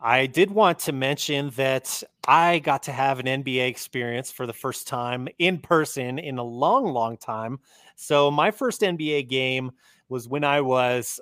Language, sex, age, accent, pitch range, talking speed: English, male, 30-49, American, 125-145 Hz, 175 wpm